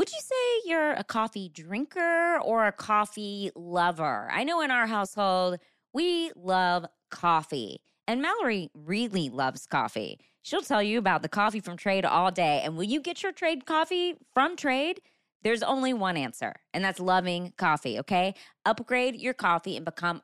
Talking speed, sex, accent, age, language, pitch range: 170 wpm, female, American, 20-39, English, 180-255 Hz